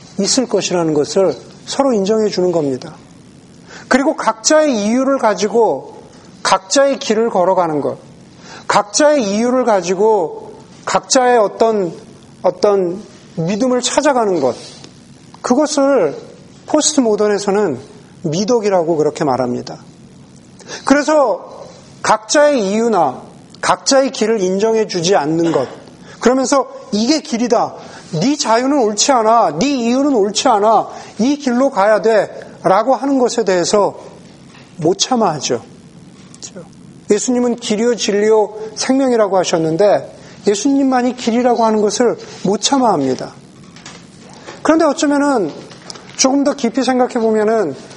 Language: Korean